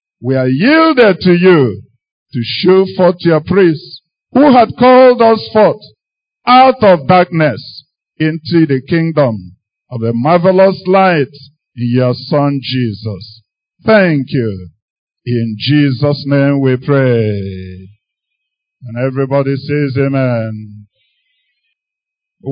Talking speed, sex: 110 wpm, male